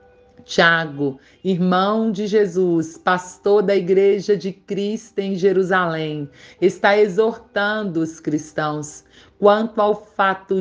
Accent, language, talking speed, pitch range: Brazilian, Portuguese, 100 wpm, 165-210 Hz